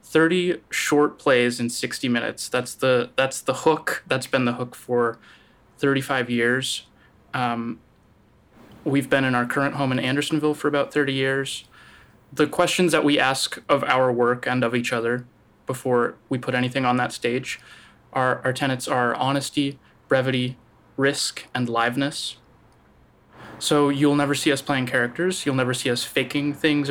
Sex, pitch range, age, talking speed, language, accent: male, 125-145 Hz, 20-39, 160 wpm, English, American